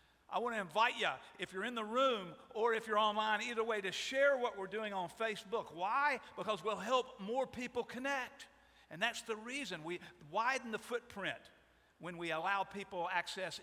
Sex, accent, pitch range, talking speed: male, American, 180-230 Hz, 190 wpm